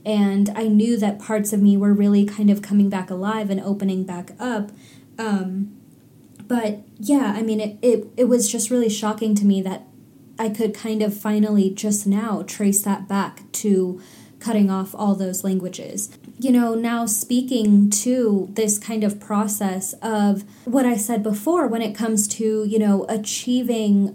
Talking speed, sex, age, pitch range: 175 wpm, female, 20-39, 200-225 Hz